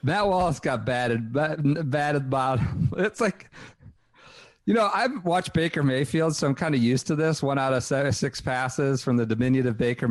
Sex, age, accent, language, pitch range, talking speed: male, 40-59, American, English, 110-165 Hz, 190 wpm